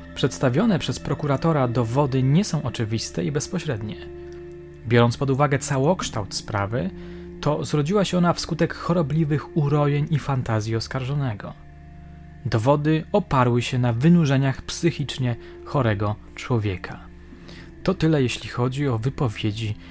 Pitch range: 105-145 Hz